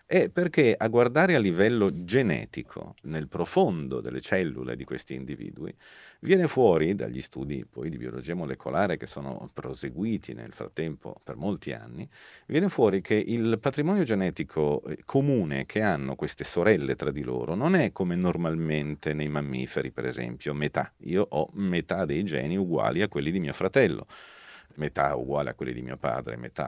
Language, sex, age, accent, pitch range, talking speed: Italian, male, 40-59, native, 75-120 Hz, 160 wpm